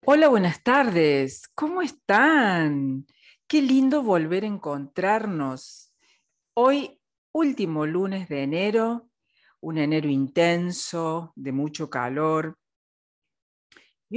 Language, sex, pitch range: Spanish, female, 135-180 Hz